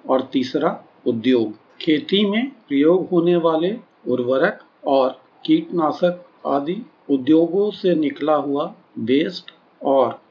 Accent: native